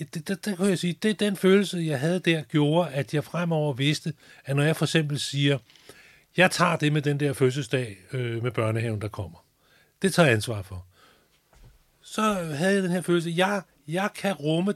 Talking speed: 190 wpm